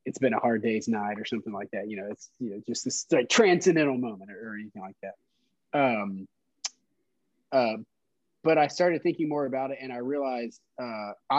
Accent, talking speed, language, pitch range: American, 200 wpm, English, 115-145 Hz